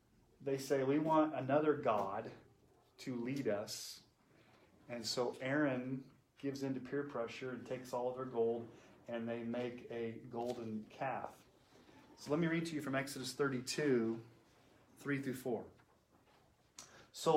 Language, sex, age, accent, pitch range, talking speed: English, male, 30-49, American, 115-140 Hz, 145 wpm